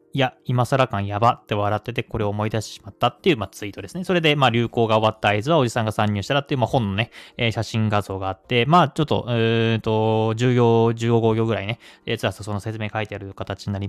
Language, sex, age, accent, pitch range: Japanese, male, 20-39, native, 105-130 Hz